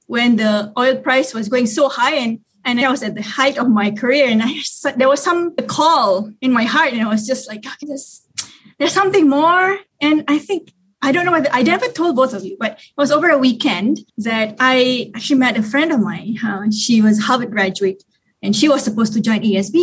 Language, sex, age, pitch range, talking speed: English, female, 20-39, 215-270 Hz, 235 wpm